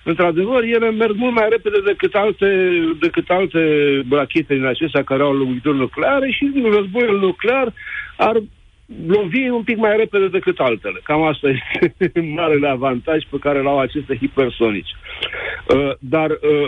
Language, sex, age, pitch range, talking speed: Romanian, male, 60-79, 140-220 Hz, 150 wpm